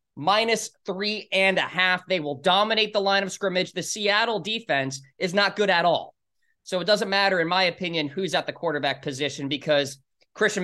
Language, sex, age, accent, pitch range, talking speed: English, male, 20-39, American, 155-230 Hz, 190 wpm